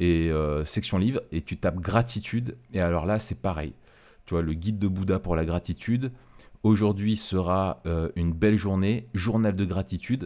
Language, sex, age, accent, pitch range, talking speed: French, male, 30-49, French, 80-105 Hz, 180 wpm